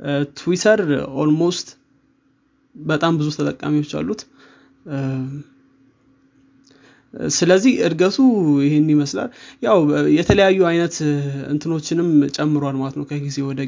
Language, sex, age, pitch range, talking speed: Amharic, male, 20-39, 140-165 Hz, 80 wpm